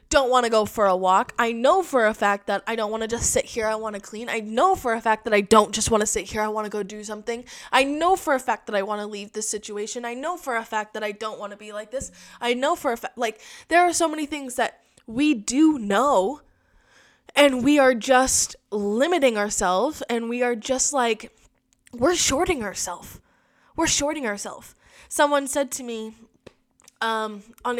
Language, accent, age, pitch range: English, American, 20-39, 215-280 Hz